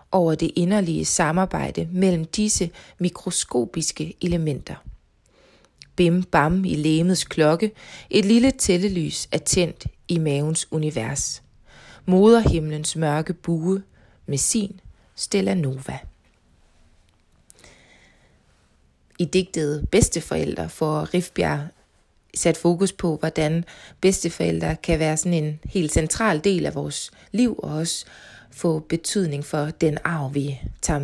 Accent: native